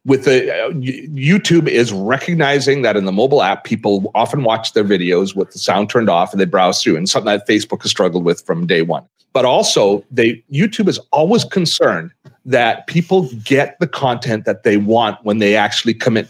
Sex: male